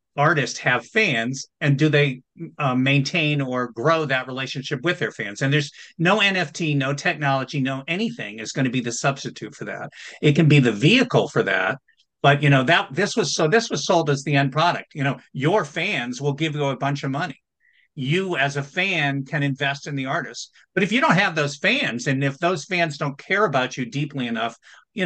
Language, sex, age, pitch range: English, male, 50-69, 130-165 Hz